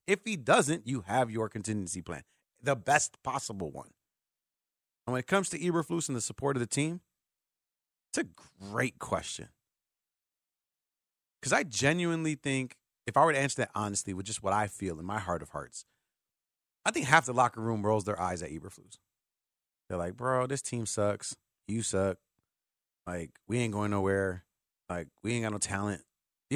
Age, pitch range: 30-49, 105-140 Hz